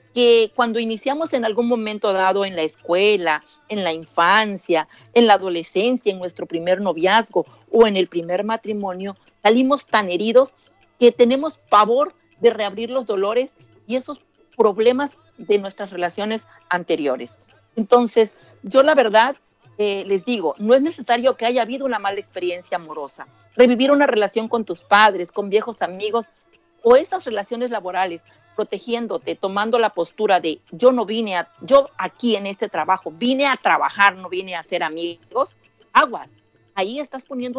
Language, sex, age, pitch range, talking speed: Spanish, female, 50-69, 185-255 Hz, 155 wpm